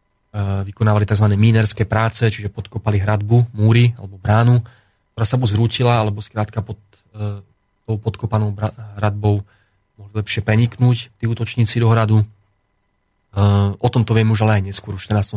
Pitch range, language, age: 100-115 Hz, Slovak, 30-49